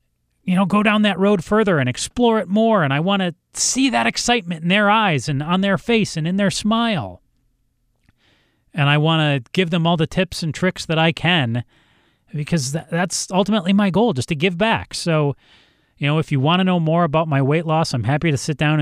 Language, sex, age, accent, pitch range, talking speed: English, male, 30-49, American, 130-170 Hz, 225 wpm